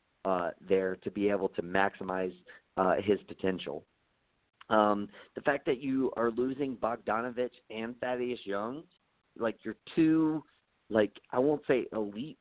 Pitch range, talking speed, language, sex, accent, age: 100-130 Hz, 140 wpm, English, male, American, 40-59